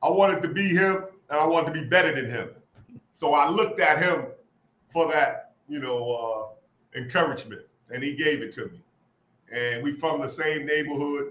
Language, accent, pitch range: English, American, 130-165 Hz